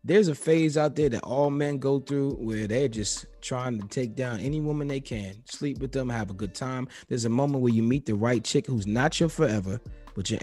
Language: English